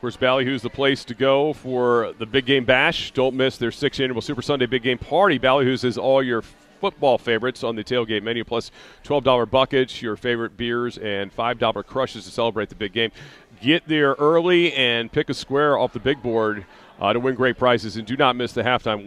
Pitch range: 105-130 Hz